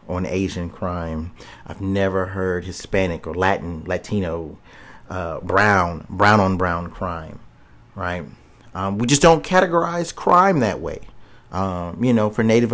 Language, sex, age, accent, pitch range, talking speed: English, male, 30-49, American, 95-120 Hz, 140 wpm